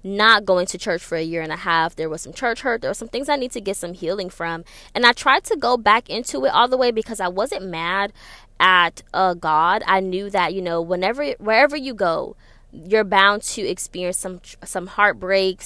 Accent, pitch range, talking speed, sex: American, 175-220 Hz, 230 wpm, female